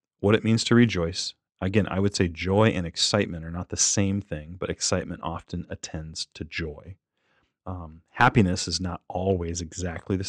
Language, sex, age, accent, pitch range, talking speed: English, male, 30-49, American, 85-110 Hz, 175 wpm